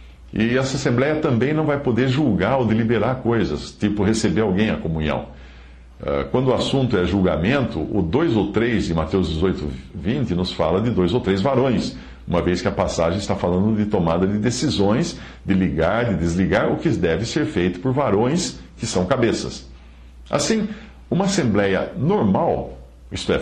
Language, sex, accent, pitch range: English, male, Brazilian, 80-110 Hz